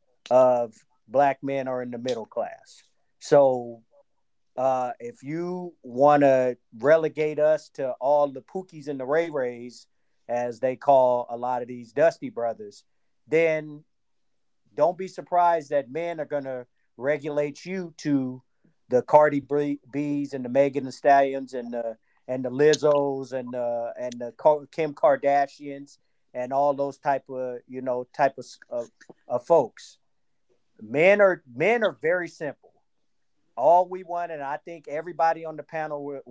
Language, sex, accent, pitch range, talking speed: English, male, American, 130-170 Hz, 155 wpm